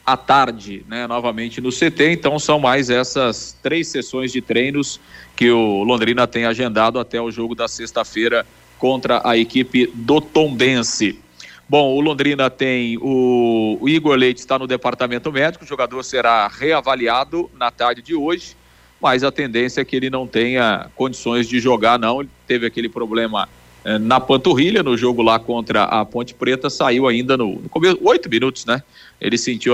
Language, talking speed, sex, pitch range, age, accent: Portuguese, 170 wpm, male, 115-135 Hz, 40-59, Brazilian